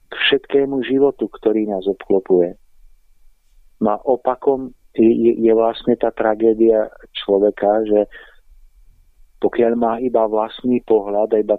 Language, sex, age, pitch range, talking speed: Slovak, male, 50-69, 105-120 Hz, 110 wpm